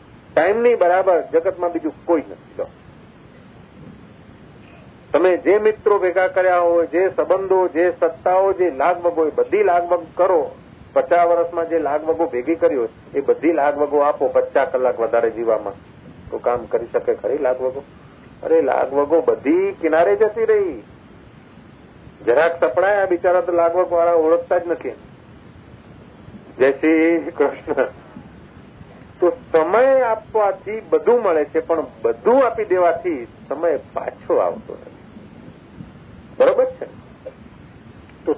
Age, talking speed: 50-69, 100 wpm